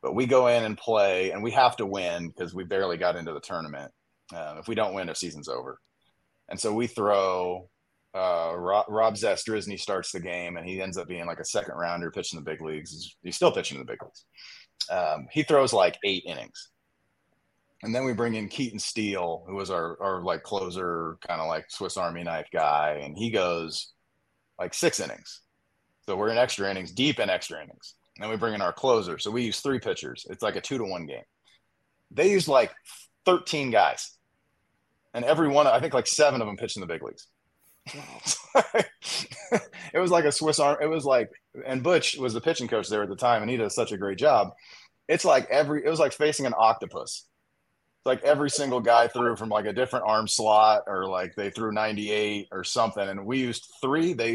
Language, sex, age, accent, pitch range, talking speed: English, male, 30-49, American, 95-130 Hz, 215 wpm